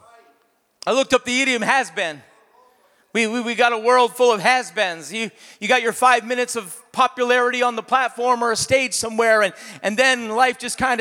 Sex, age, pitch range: male, 40-59, 250-305 Hz